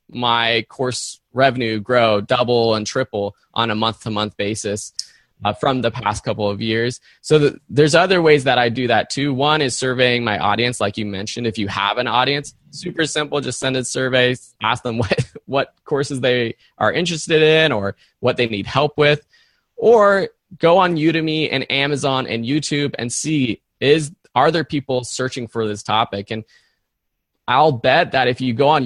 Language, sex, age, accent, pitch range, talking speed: English, male, 20-39, American, 115-145 Hz, 185 wpm